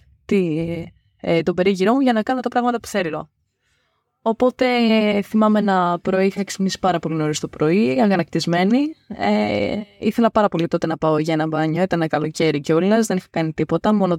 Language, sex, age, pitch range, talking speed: Greek, female, 20-39, 170-245 Hz, 160 wpm